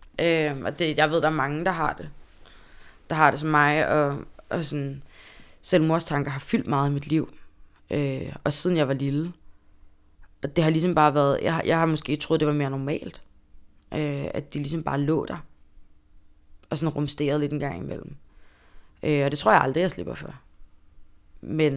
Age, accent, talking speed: 20-39, native, 200 wpm